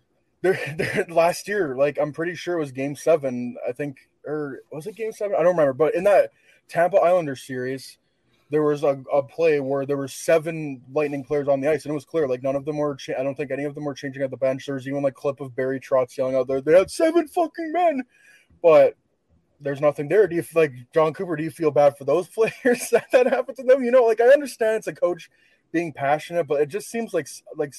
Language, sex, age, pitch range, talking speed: English, male, 20-39, 140-180 Hz, 255 wpm